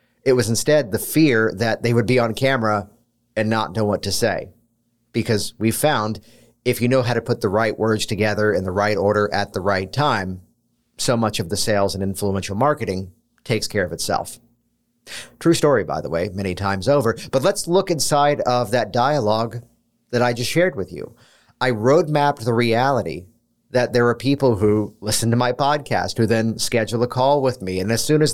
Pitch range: 105-130 Hz